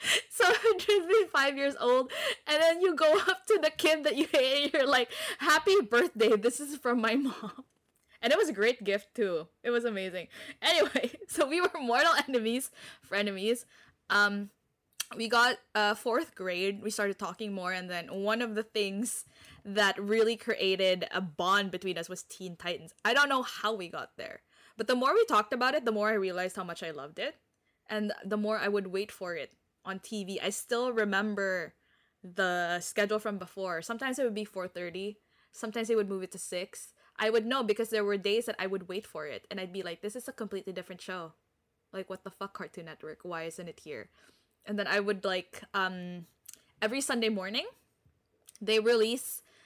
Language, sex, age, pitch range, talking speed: English, female, 20-39, 190-245 Hz, 200 wpm